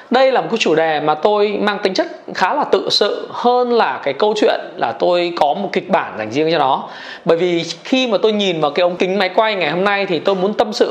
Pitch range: 175-235 Hz